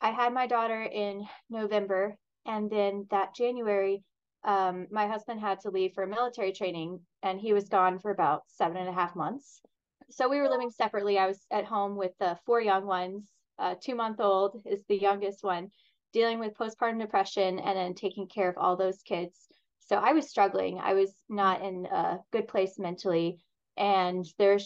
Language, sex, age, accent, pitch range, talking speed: English, female, 20-39, American, 185-215 Hz, 190 wpm